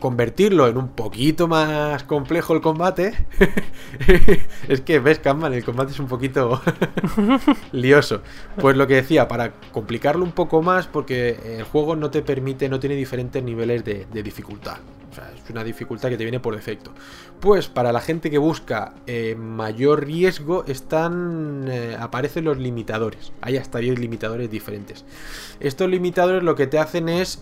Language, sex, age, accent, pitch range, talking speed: Spanish, male, 20-39, Spanish, 120-155 Hz, 165 wpm